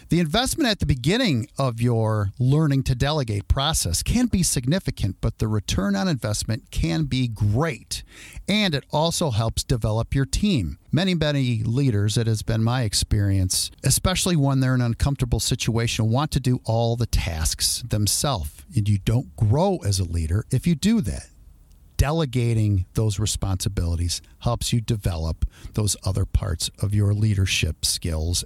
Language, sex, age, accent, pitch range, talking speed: English, male, 50-69, American, 105-155 Hz, 160 wpm